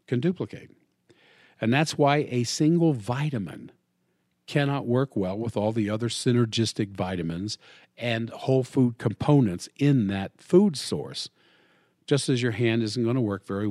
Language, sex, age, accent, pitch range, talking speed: English, male, 50-69, American, 110-160 Hz, 150 wpm